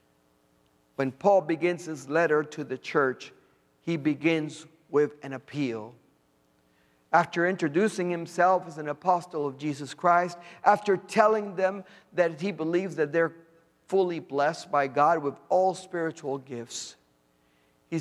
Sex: male